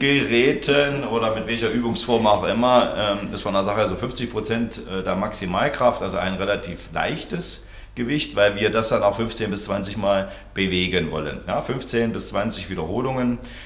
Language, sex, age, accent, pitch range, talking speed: German, male, 40-59, German, 90-115 Hz, 165 wpm